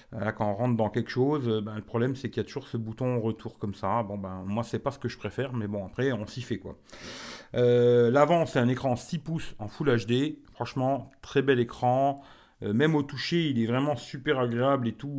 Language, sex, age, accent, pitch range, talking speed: French, male, 40-59, French, 115-150 Hz, 240 wpm